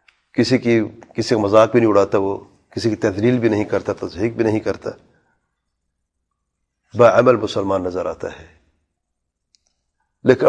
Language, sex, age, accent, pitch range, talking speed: English, male, 40-59, Indian, 95-135 Hz, 145 wpm